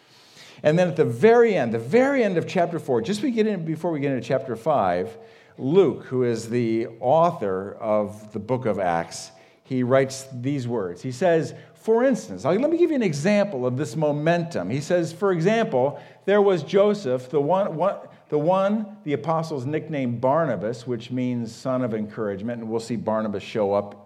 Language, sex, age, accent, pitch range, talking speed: English, male, 50-69, American, 105-165 Hz, 180 wpm